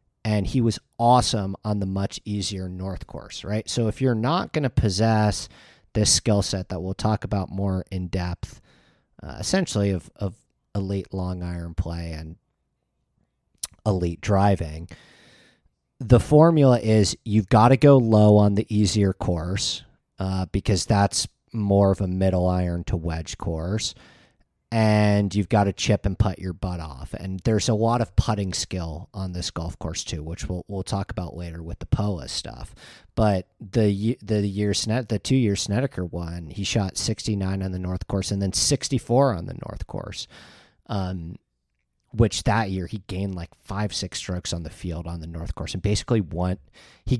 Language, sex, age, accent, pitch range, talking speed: English, male, 40-59, American, 90-110 Hz, 175 wpm